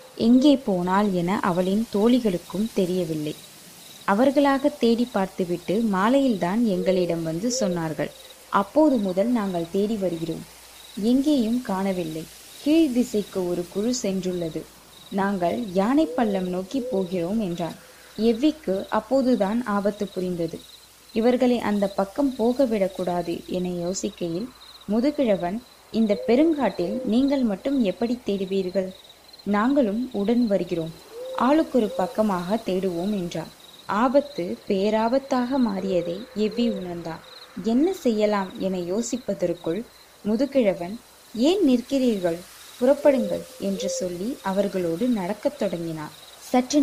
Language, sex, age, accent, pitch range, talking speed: Tamil, female, 20-39, native, 185-250 Hz, 95 wpm